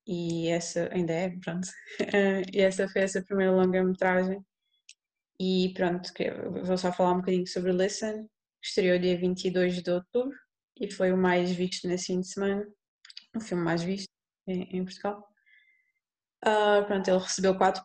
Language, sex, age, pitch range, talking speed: Portuguese, female, 20-39, 180-205 Hz, 155 wpm